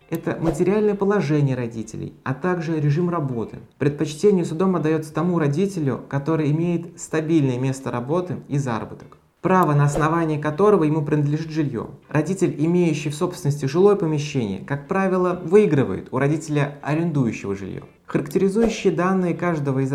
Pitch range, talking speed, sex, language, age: 135-170 Hz, 130 wpm, male, Russian, 20-39